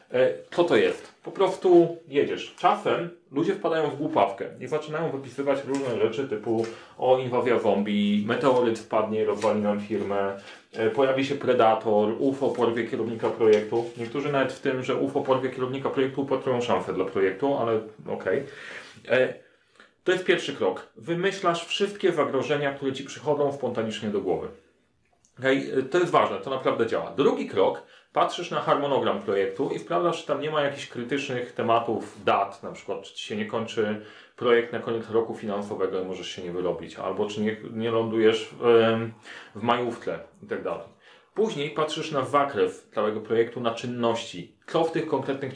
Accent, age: native, 30-49